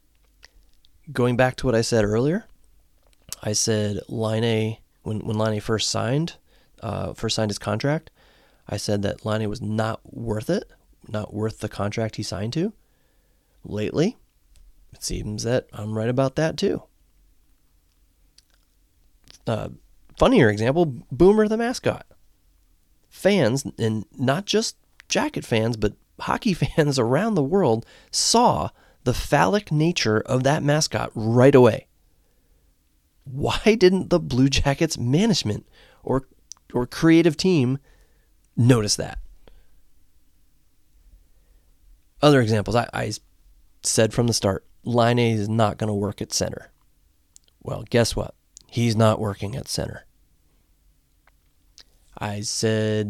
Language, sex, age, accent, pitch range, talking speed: English, male, 30-49, American, 80-130 Hz, 130 wpm